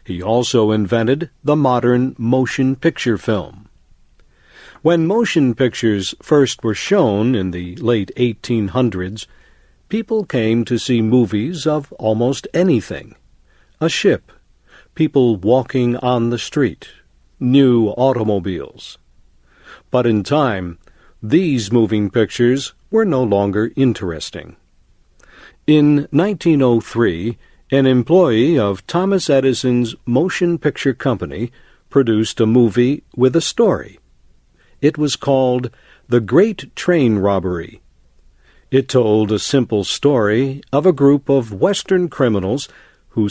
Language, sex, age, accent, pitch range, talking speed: English, male, 60-79, American, 105-140 Hz, 110 wpm